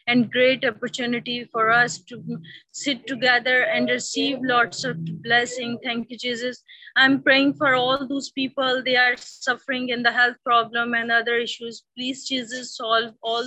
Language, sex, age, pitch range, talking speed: English, female, 20-39, 240-265 Hz, 160 wpm